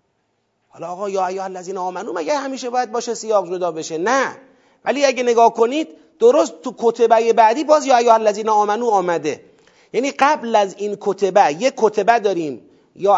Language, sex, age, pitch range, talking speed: Persian, male, 40-59, 200-260 Hz, 170 wpm